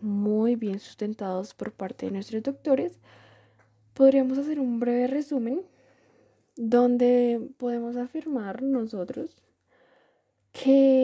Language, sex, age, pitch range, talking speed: Spanish, female, 10-29, 225-265 Hz, 100 wpm